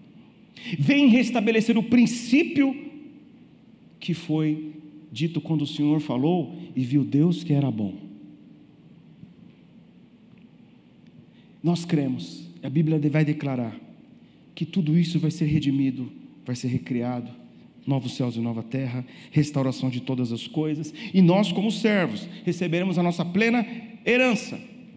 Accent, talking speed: Brazilian, 125 wpm